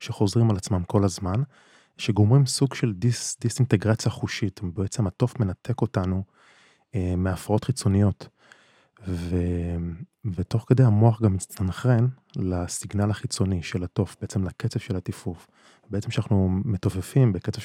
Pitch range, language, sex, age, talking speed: 95-115 Hz, Hebrew, male, 20-39, 120 wpm